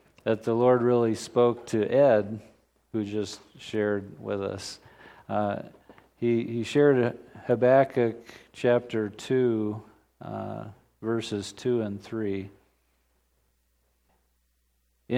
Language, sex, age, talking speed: English, male, 50-69, 100 wpm